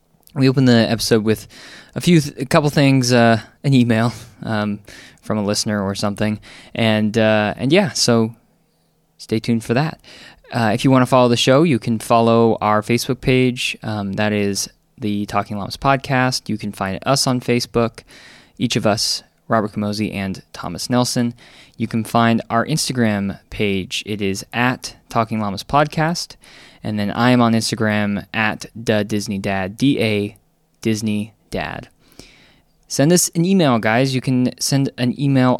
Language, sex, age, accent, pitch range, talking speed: English, male, 20-39, American, 105-130 Hz, 165 wpm